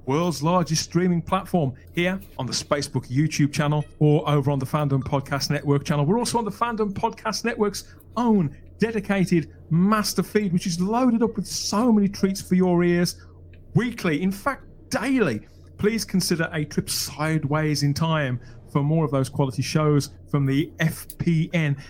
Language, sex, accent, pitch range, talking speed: English, male, British, 135-190 Hz, 165 wpm